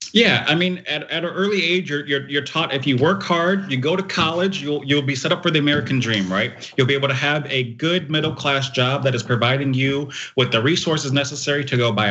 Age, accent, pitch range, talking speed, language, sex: 30-49, American, 115-140 Hz, 255 wpm, English, male